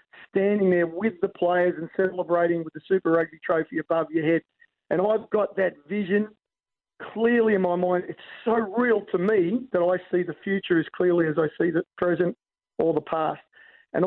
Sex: male